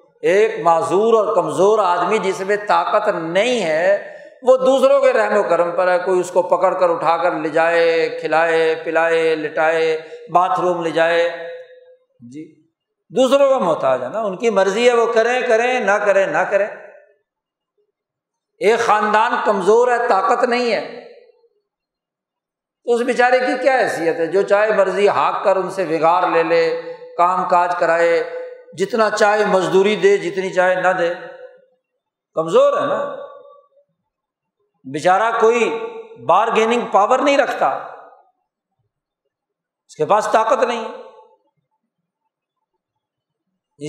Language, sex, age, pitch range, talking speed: Urdu, male, 50-69, 180-280 Hz, 135 wpm